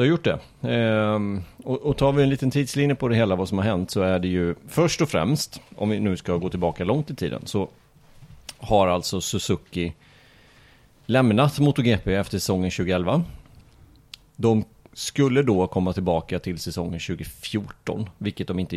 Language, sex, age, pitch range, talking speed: Swedish, male, 30-49, 90-130 Hz, 170 wpm